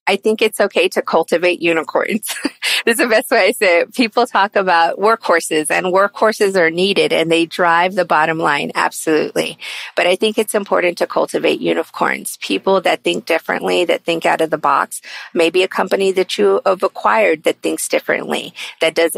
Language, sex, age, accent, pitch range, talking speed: English, female, 40-59, American, 170-215 Hz, 190 wpm